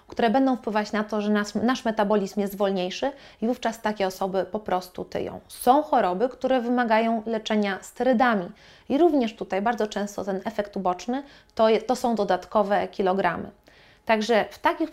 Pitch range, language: 205-245 Hz, Polish